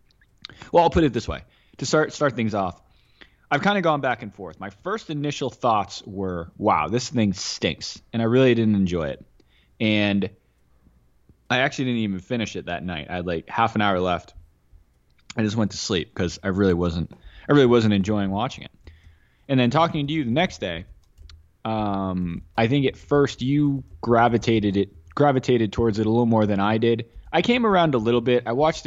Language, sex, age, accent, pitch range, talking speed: English, male, 20-39, American, 95-125 Hz, 200 wpm